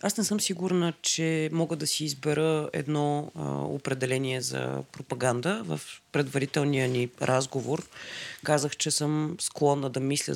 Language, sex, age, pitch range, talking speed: Bulgarian, female, 30-49, 125-155 Hz, 140 wpm